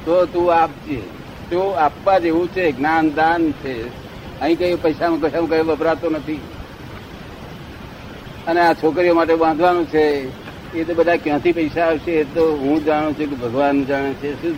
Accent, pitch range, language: native, 140-170 Hz, Gujarati